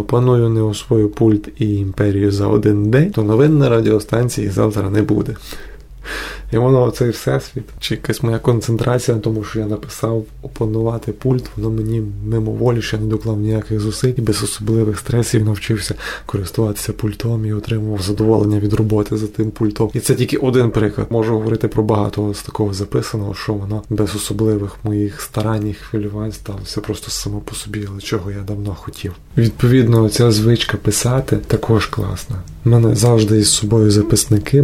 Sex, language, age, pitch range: male, Ukrainian, 20-39, 105-120 Hz